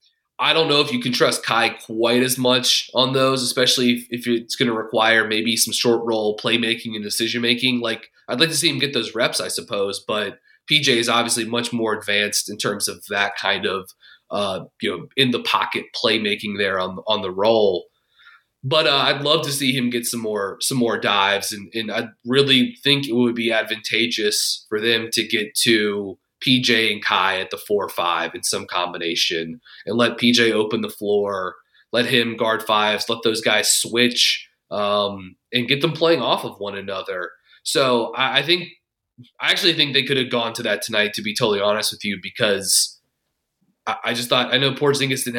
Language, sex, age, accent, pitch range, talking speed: English, male, 30-49, American, 110-125 Hz, 205 wpm